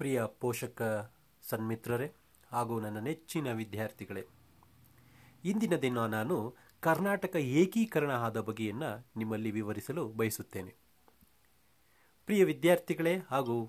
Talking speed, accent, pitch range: 90 wpm, native, 110-175 Hz